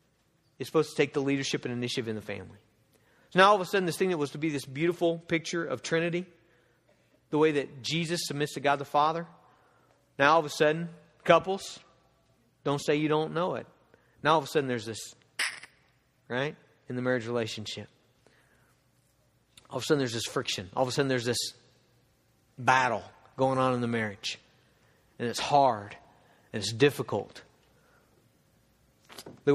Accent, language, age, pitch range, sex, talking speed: American, English, 50-69, 130-170 Hz, male, 175 wpm